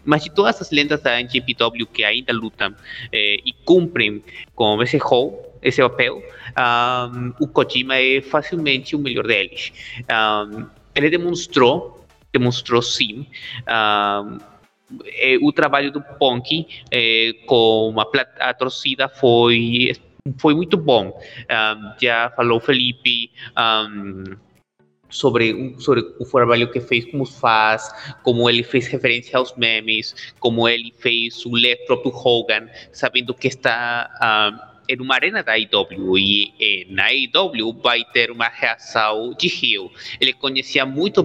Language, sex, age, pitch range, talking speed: Portuguese, male, 30-49, 115-150 Hz, 140 wpm